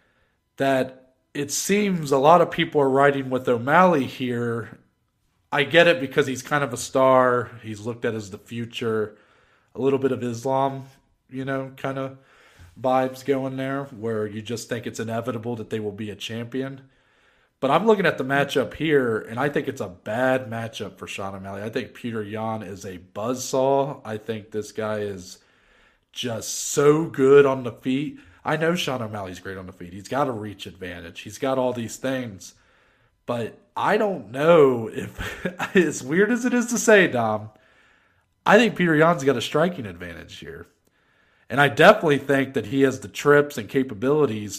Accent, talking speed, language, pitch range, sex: American, 185 wpm, English, 110-140 Hz, male